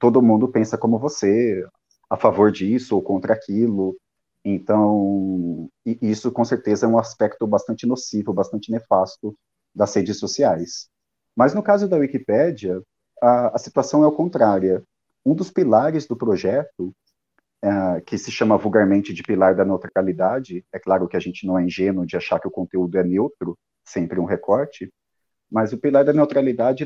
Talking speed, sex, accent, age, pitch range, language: 160 wpm, male, Brazilian, 30-49, 100-130 Hz, Portuguese